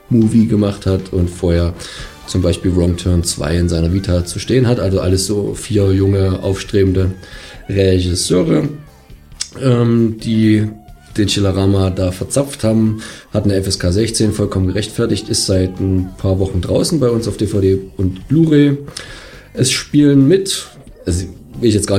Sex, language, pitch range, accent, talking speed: male, German, 95-115 Hz, German, 155 wpm